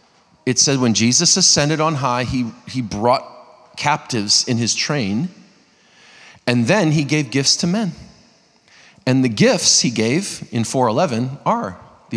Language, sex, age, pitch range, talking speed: English, male, 30-49, 125-185 Hz, 155 wpm